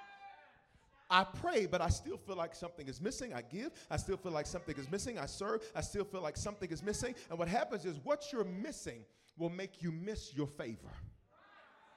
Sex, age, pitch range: male, 40-59, 150-245 Hz